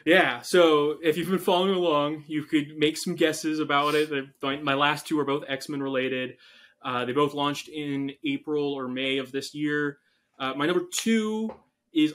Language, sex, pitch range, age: English, male, 130-155 Hz, 20-39